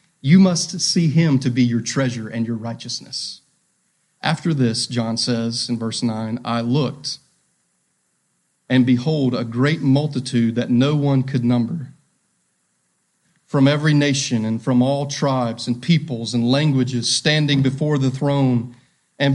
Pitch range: 125-160 Hz